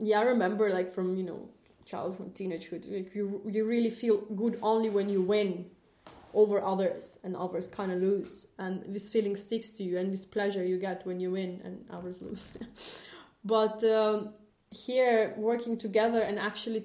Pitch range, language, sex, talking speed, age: 185-225 Hz, English, female, 180 wpm, 20-39